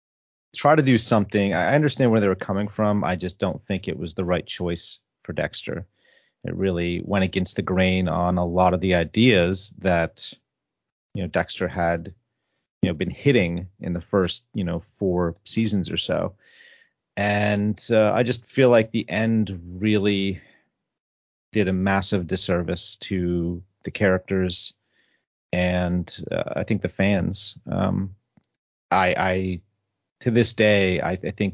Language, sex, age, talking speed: English, male, 30-49, 160 wpm